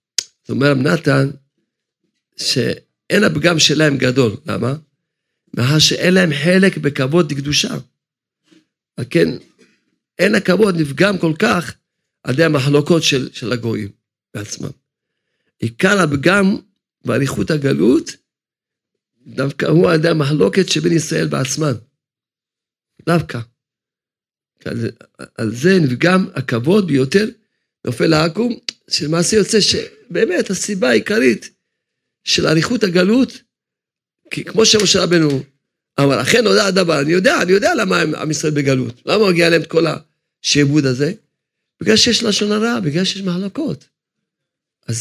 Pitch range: 130-185 Hz